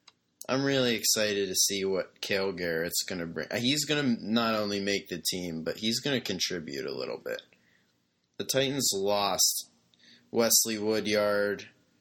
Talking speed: 160 wpm